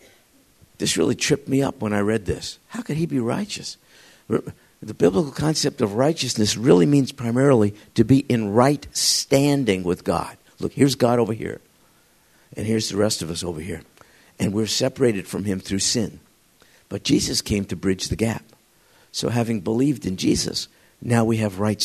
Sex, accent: male, American